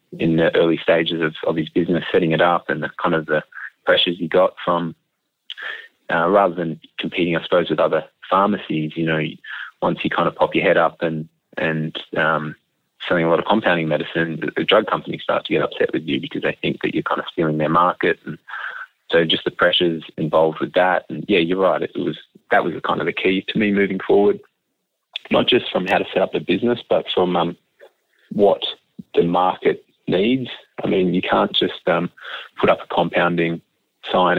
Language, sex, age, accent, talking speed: English, male, 30-49, Australian, 205 wpm